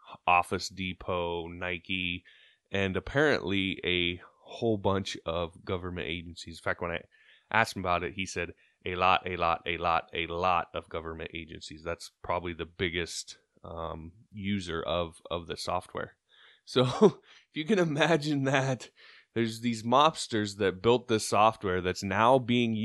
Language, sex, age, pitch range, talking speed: English, male, 20-39, 90-115 Hz, 150 wpm